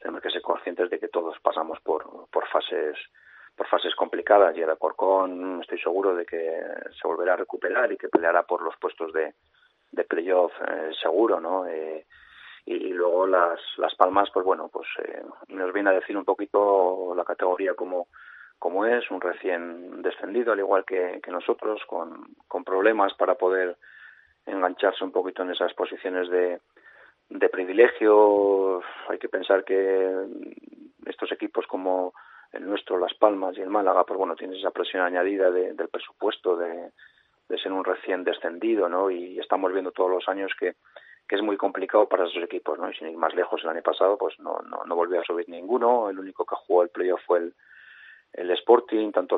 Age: 30-49